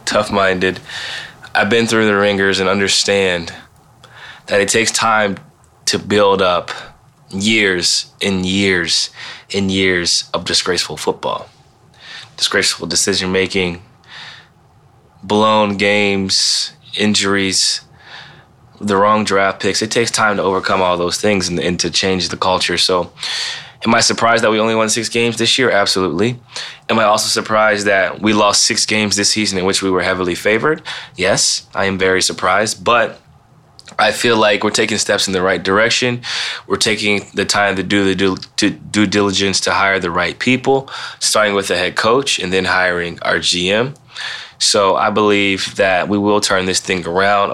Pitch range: 95-105 Hz